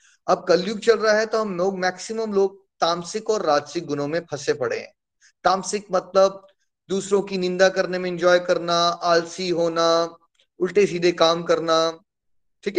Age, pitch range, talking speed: 20-39, 150-180 Hz, 160 wpm